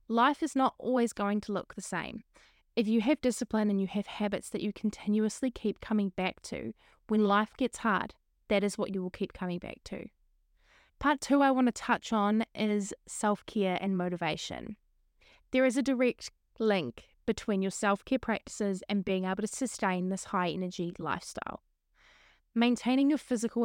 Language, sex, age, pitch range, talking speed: English, female, 20-39, 195-230 Hz, 175 wpm